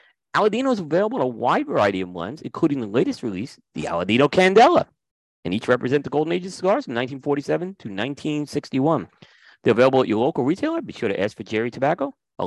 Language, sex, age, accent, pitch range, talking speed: English, male, 40-59, American, 125-175 Hz, 200 wpm